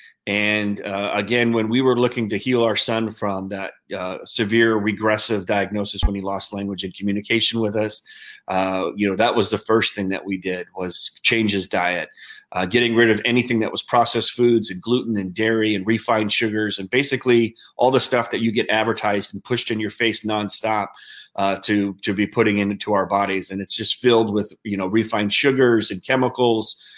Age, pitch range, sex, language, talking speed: 30-49, 100-125 Hz, male, English, 200 wpm